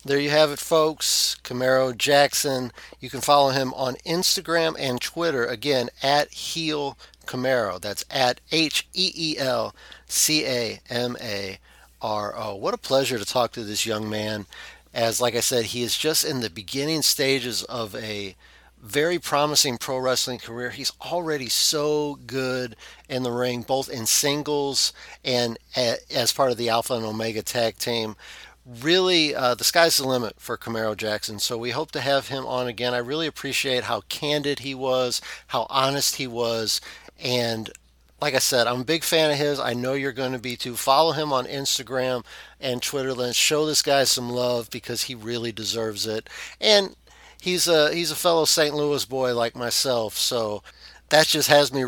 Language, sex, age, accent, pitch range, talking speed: English, male, 50-69, American, 115-145 Hz, 170 wpm